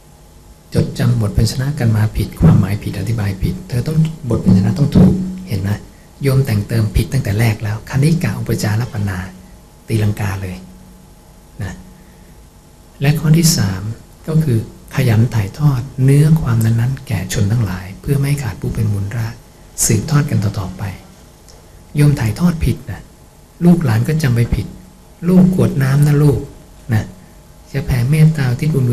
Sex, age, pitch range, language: male, 60-79, 105-145 Hz, English